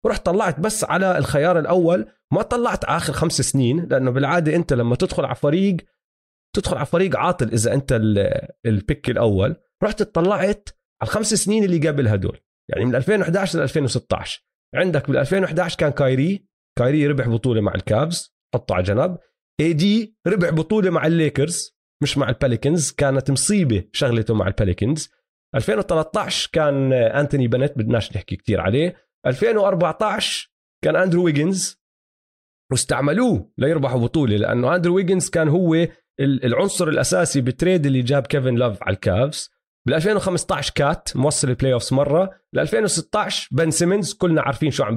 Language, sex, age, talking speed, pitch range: Arabic, male, 30-49, 150 wpm, 125-180 Hz